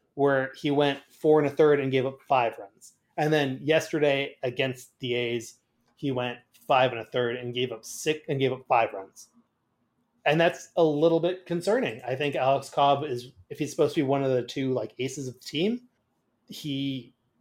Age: 30-49